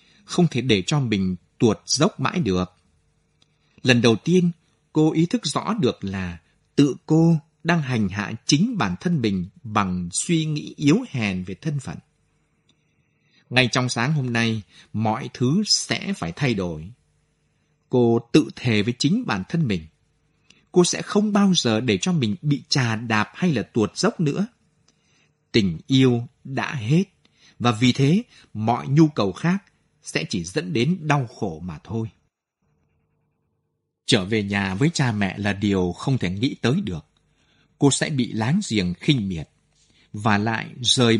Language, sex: Vietnamese, male